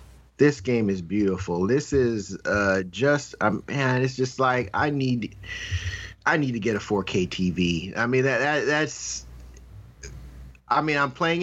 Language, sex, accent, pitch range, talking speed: English, male, American, 85-120 Hz, 165 wpm